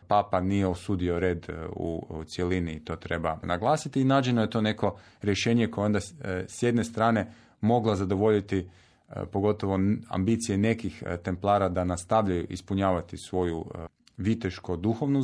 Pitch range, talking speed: 90-110 Hz, 125 wpm